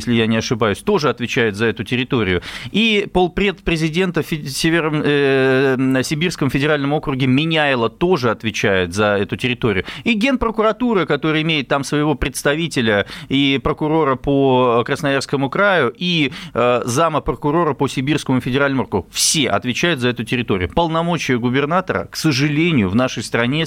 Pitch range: 125-165 Hz